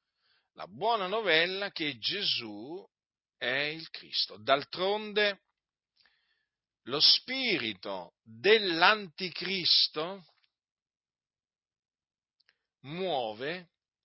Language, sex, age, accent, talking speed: Italian, male, 50-69, native, 60 wpm